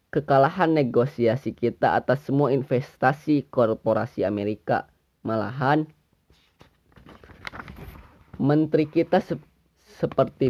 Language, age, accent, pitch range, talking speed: Indonesian, 20-39, native, 110-140 Hz, 75 wpm